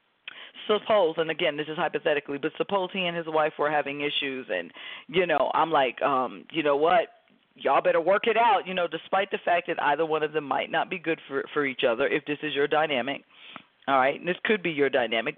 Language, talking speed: English, 235 wpm